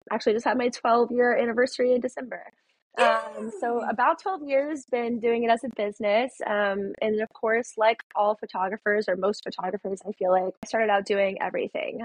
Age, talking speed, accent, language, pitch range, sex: 20-39, 185 wpm, American, English, 195-225 Hz, female